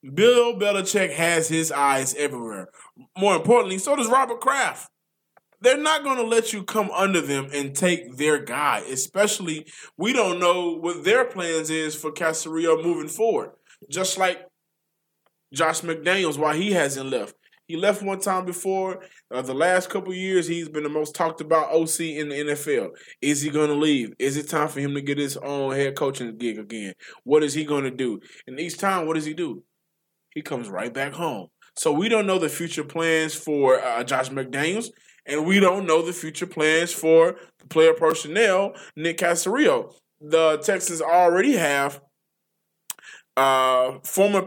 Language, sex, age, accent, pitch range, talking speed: English, male, 20-39, American, 150-185 Hz, 175 wpm